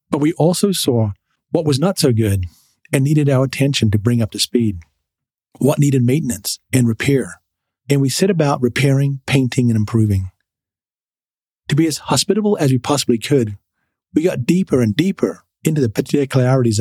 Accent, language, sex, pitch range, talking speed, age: American, English, male, 115-150 Hz, 170 wpm, 40-59